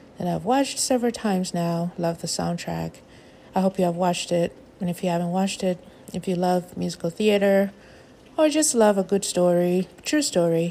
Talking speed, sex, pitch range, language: 190 wpm, female, 170-195 Hz, English